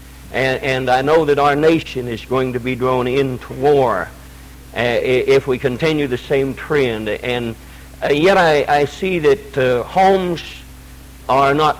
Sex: male